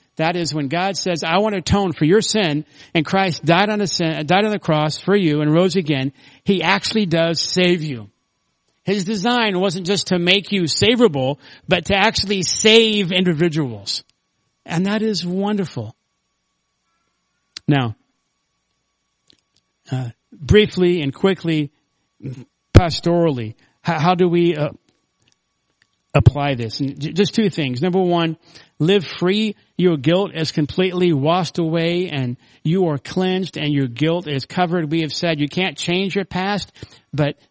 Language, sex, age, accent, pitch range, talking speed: English, male, 50-69, American, 145-185 Hz, 150 wpm